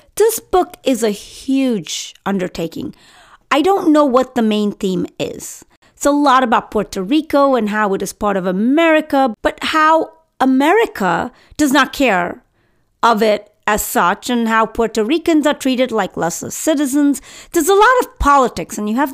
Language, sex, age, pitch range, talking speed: English, female, 30-49, 225-300 Hz, 170 wpm